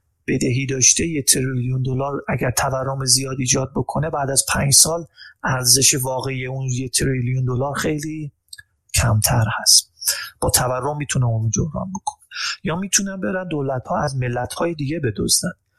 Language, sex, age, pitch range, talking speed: Persian, male, 30-49, 120-155 Hz, 150 wpm